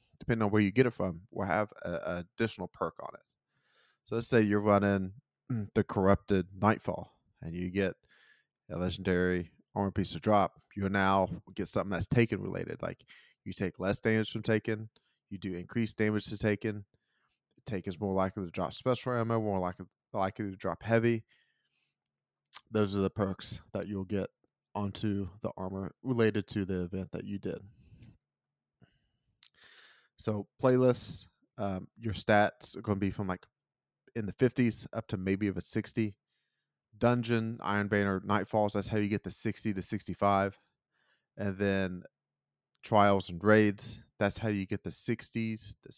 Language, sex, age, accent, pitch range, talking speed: English, male, 20-39, American, 95-110 Hz, 165 wpm